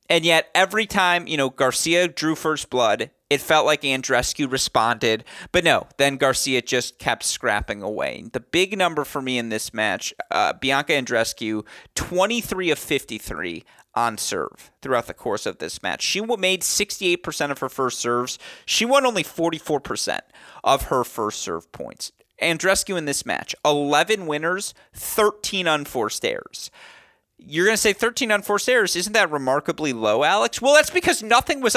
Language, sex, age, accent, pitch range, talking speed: English, male, 30-49, American, 130-195 Hz, 165 wpm